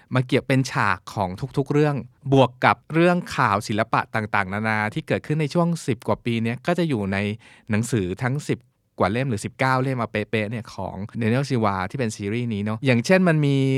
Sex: male